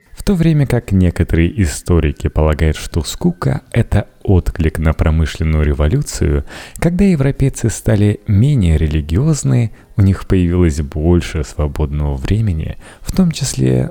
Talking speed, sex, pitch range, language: 120 wpm, male, 80-115 Hz, Russian